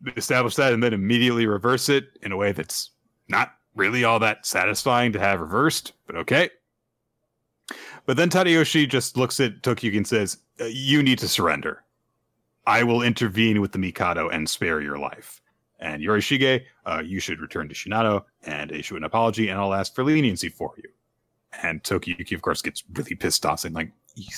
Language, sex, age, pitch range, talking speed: English, male, 30-49, 100-130 Hz, 185 wpm